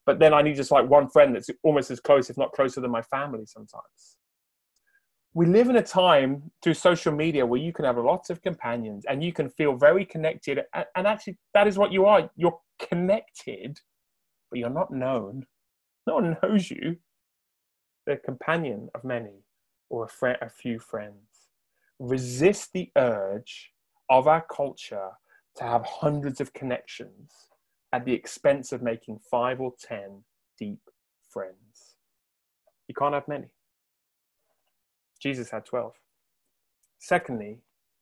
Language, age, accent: English, 30-49, British